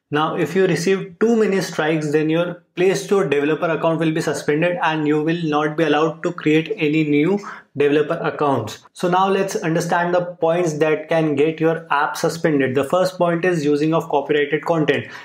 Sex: male